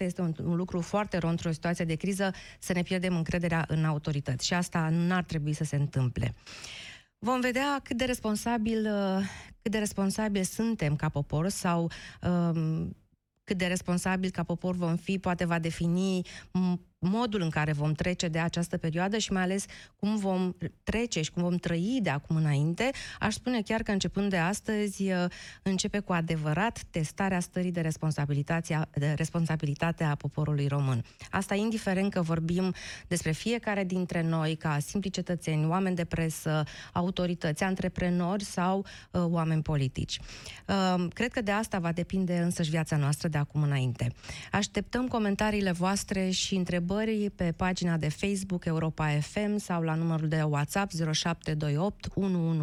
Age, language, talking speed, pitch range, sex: 20-39, Romanian, 150 wpm, 160-195 Hz, female